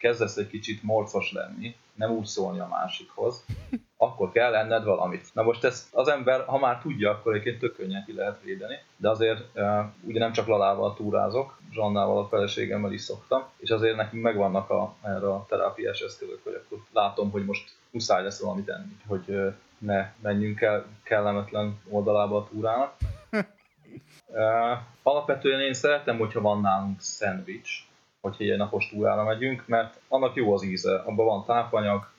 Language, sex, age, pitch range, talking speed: Hungarian, male, 20-39, 100-120 Hz, 160 wpm